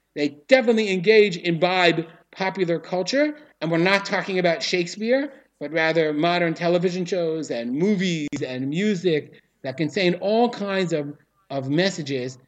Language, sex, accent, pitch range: English, male, American, 155-205 Hz